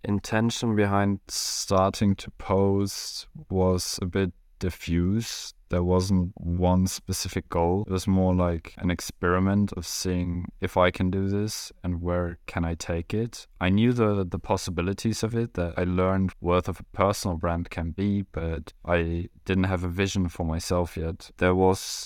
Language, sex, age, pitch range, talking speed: English, male, 20-39, 85-100 Hz, 165 wpm